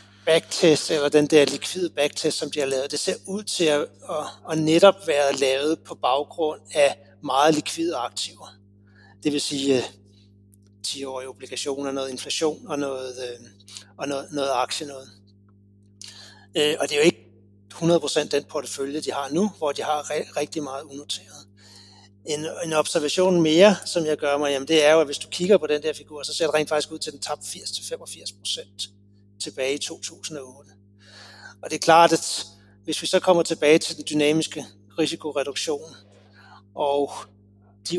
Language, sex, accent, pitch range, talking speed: Danish, male, native, 100-155 Hz, 165 wpm